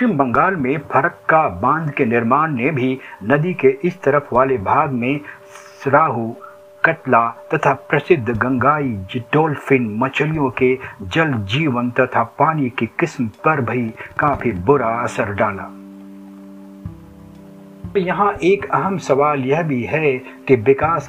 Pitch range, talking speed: 120-145 Hz, 115 wpm